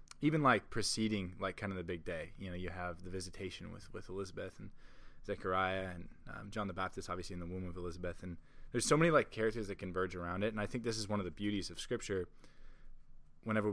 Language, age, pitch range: English, 20-39, 95-115 Hz